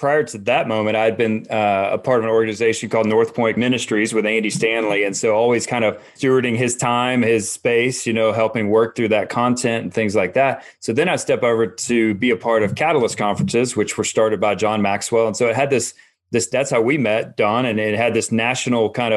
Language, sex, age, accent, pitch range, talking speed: English, male, 30-49, American, 110-135 Hz, 235 wpm